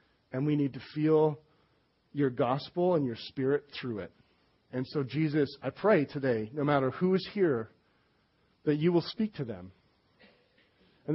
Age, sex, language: 40-59, male, English